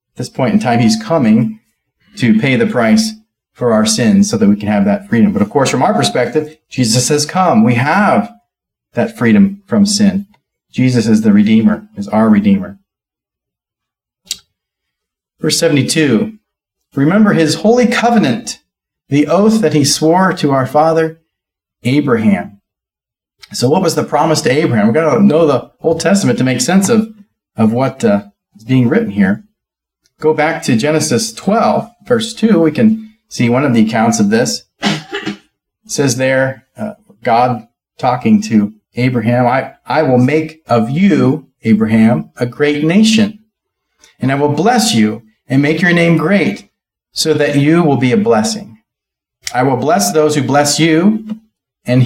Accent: American